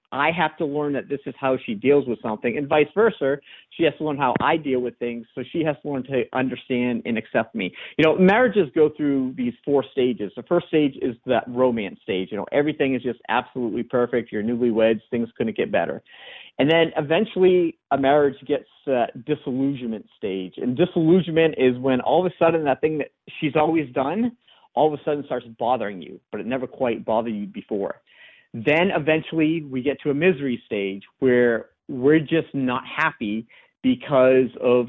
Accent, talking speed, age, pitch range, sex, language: American, 200 wpm, 50-69, 120-160 Hz, male, English